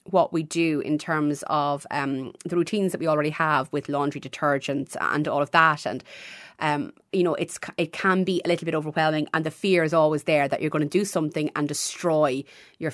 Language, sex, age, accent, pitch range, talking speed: English, female, 30-49, Irish, 155-195 Hz, 220 wpm